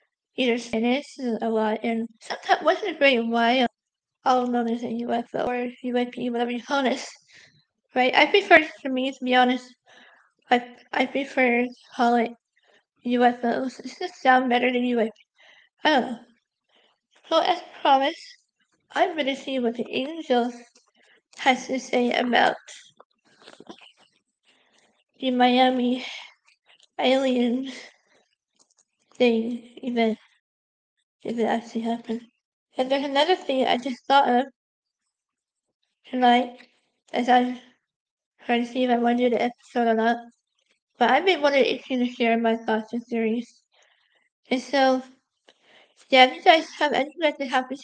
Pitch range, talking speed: 240-270 Hz, 140 wpm